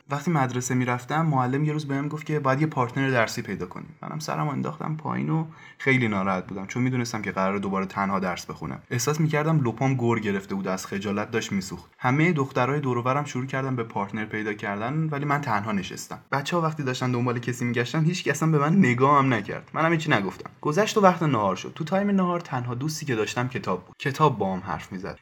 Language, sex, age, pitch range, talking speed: Persian, male, 20-39, 110-150 Hz, 220 wpm